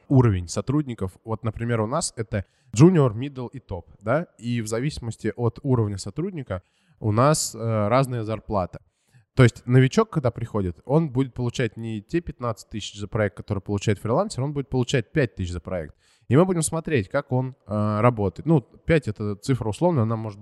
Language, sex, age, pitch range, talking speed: Russian, male, 20-39, 105-130 Hz, 185 wpm